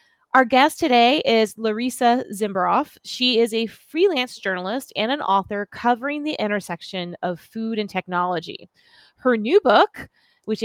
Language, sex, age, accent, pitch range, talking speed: English, female, 20-39, American, 195-255 Hz, 140 wpm